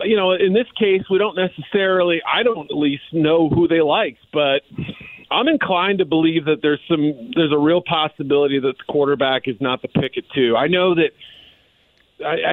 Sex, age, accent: male, 40-59, American